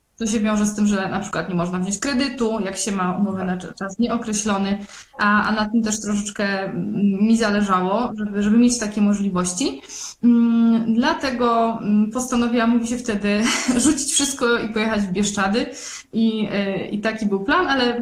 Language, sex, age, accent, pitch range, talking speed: Polish, female, 20-39, native, 195-240 Hz, 165 wpm